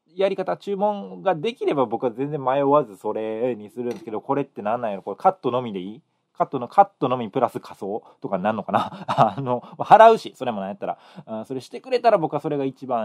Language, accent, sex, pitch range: Japanese, native, male, 105-155 Hz